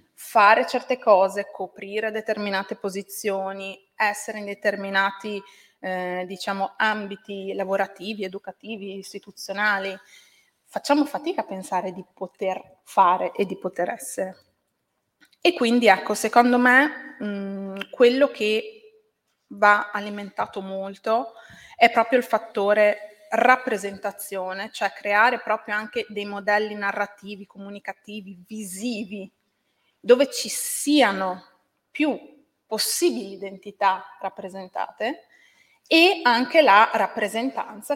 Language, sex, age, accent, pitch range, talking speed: Italian, female, 20-39, native, 195-230 Hz, 100 wpm